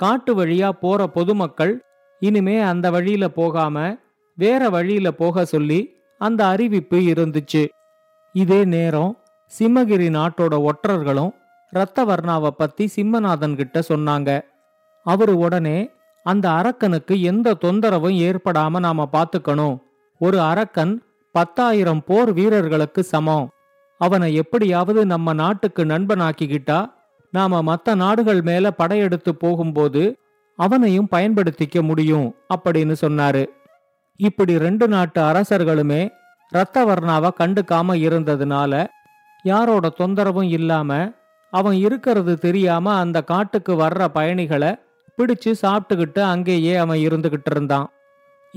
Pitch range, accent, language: 160-210 Hz, native, Tamil